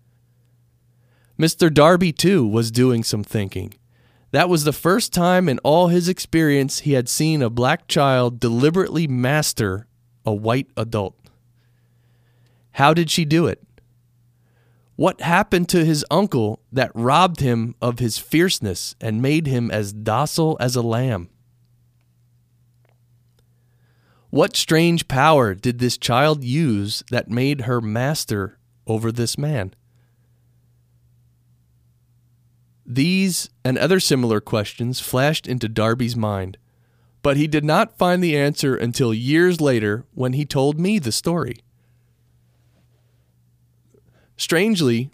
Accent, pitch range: American, 120-150 Hz